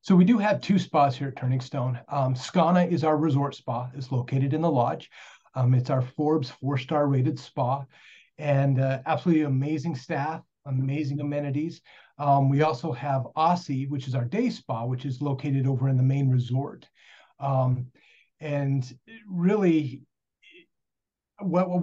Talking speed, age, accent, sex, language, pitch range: 155 wpm, 40-59, American, male, English, 130-155 Hz